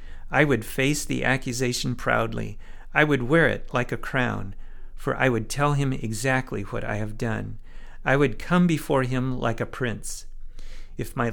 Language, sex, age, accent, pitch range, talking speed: English, male, 50-69, American, 110-135 Hz, 175 wpm